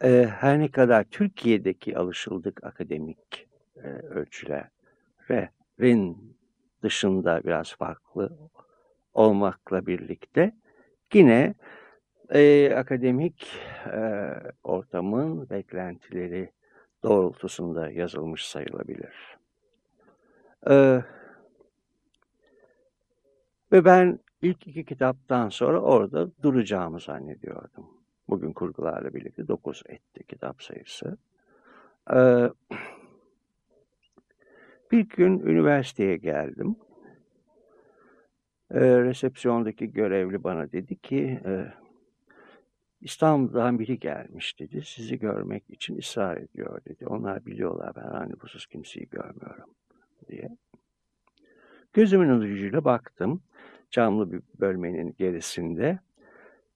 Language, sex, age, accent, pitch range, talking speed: Turkish, male, 60-79, native, 95-145 Hz, 80 wpm